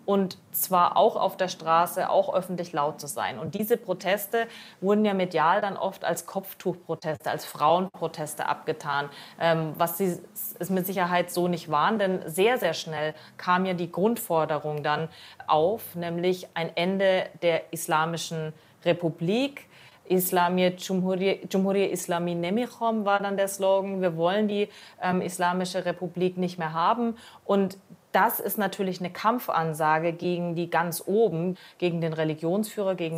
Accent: German